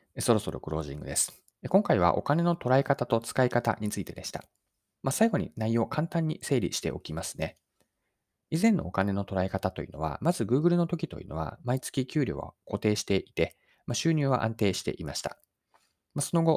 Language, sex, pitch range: Japanese, male, 95-140 Hz